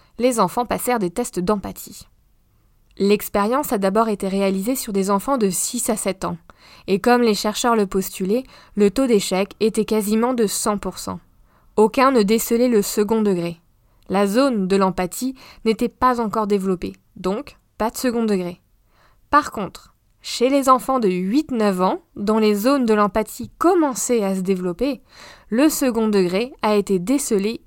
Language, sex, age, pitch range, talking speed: French, female, 20-39, 195-250 Hz, 160 wpm